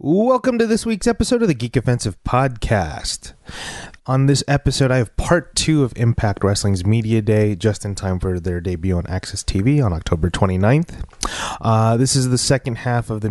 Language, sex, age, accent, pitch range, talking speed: English, male, 20-39, American, 95-115 Hz, 190 wpm